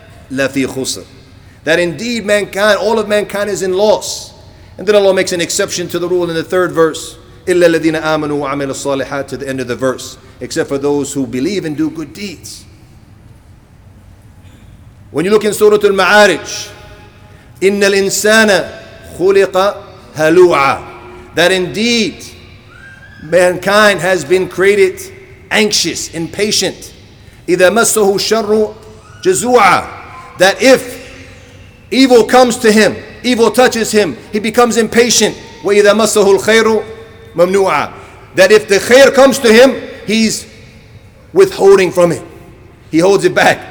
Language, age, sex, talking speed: English, 40-59, male, 115 wpm